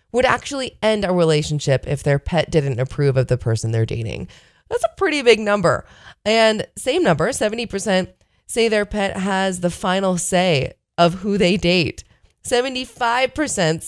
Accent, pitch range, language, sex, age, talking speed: American, 145-220 Hz, English, female, 20-39, 155 wpm